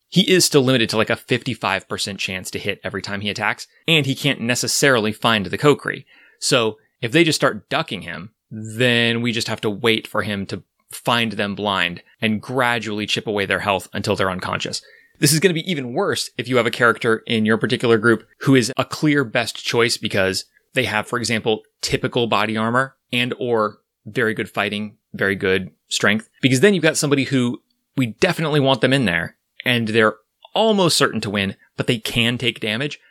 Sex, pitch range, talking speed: male, 105-135 Hz, 200 wpm